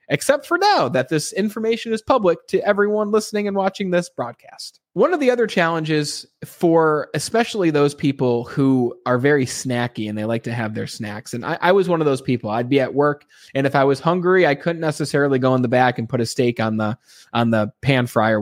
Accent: American